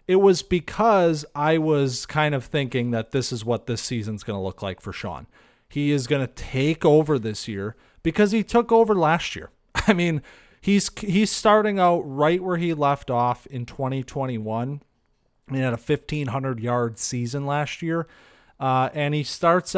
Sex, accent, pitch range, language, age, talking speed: male, American, 130-185 Hz, English, 30-49, 185 wpm